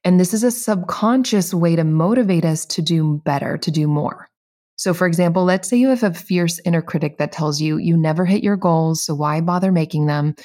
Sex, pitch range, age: female, 160-195 Hz, 20-39